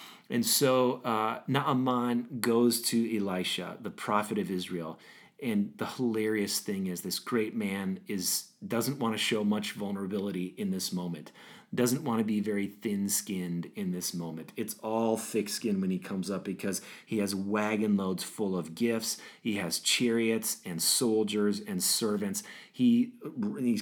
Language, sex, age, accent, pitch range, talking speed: English, male, 40-59, American, 95-120 Hz, 155 wpm